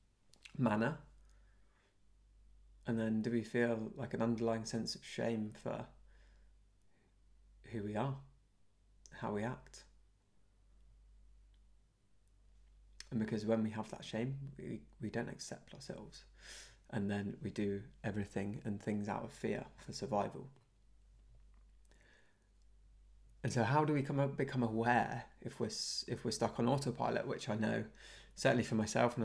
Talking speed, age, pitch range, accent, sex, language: 135 wpm, 20-39, 100-120 Hz, British, male, English